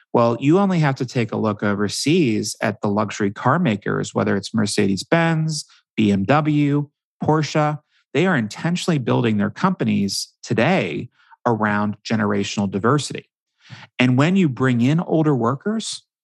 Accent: American